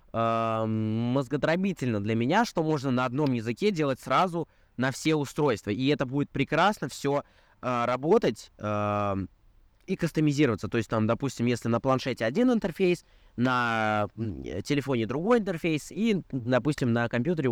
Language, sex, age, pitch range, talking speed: Russian, male, 20-39, 115-165 Hz, 130 wpm